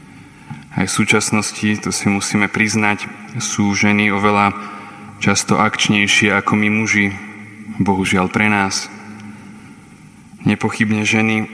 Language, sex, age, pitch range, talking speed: Slovak, male, 20-39, 100-105 Hz, 105 wpm